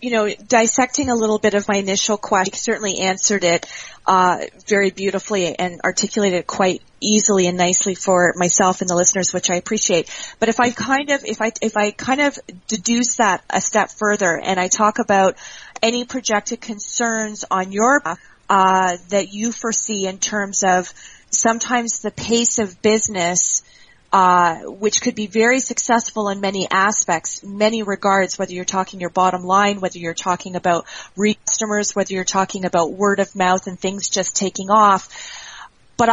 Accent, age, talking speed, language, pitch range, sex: American, 30-49, 175 wpm, English, 190-220 Hz, female